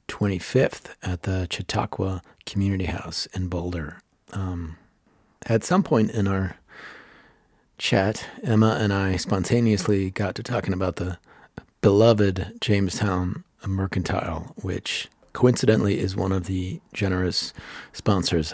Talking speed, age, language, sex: 115 wpm, 40-59, English, male